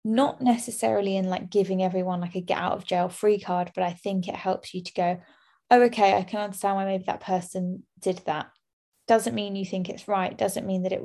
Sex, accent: female, British